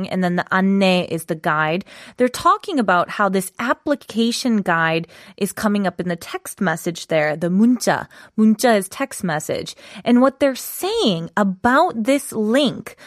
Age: 20-39